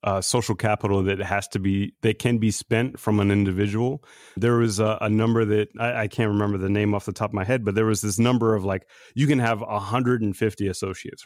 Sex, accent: male, American